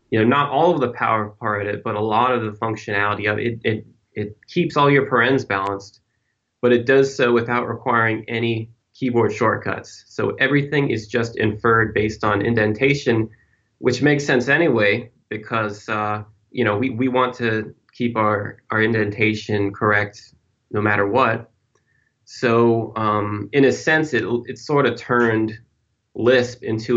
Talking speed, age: 160 wpm, 20-39